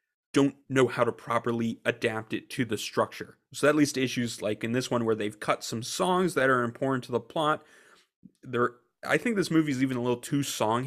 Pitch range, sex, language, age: 115-145 Hz, male, English, 30-49